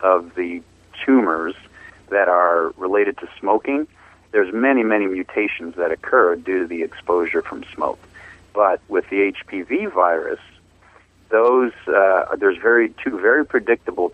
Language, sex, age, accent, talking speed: English, male, 50-69, American, 135 wpm